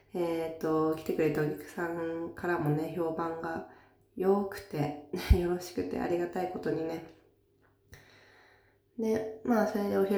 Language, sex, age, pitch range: Japanese, female, 20-39, 145-200 Hz